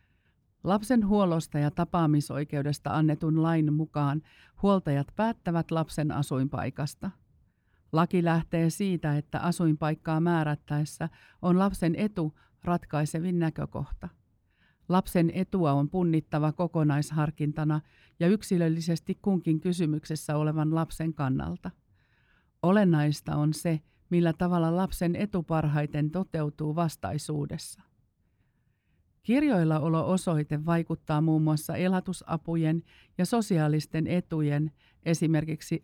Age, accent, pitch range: 50-69, native, 150-180 Hz